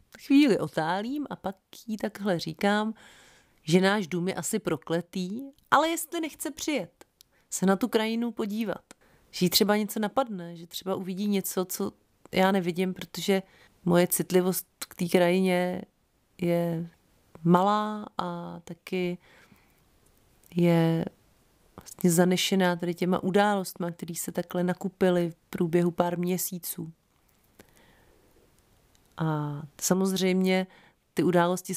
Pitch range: 175-200 Hz